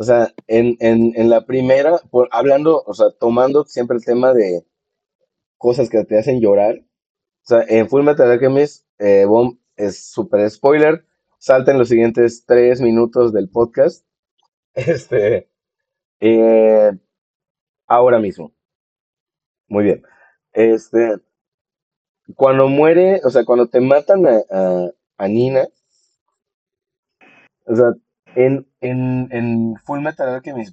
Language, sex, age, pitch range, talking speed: Spanish, male, 30-49, 110-140 Hz, 125 wpm